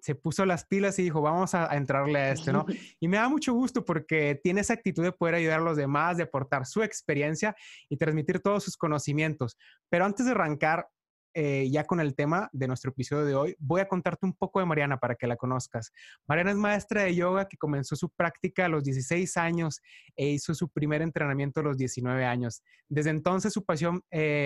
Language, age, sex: Spanish, 20-39, male